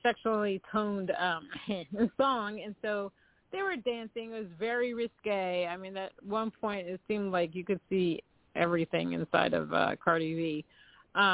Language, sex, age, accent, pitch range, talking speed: English, female, 40-59, American, 185-235 Hz, 165 wpm